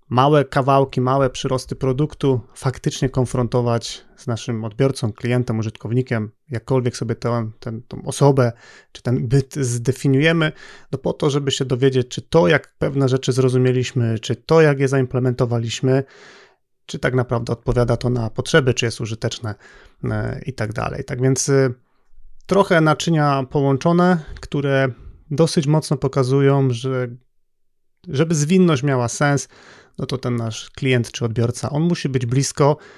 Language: Polish